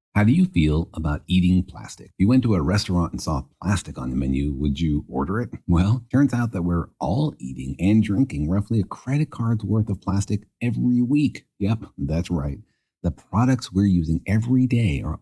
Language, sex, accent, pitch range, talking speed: English, male, American, 90-115 Hz, 195 wpm